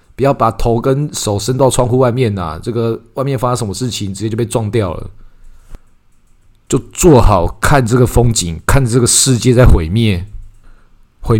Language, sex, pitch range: Chinese, male, 95-110 Hz